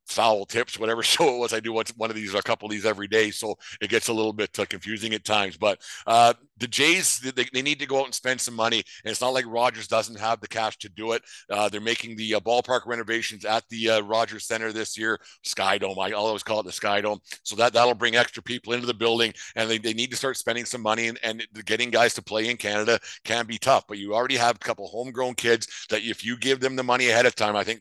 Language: English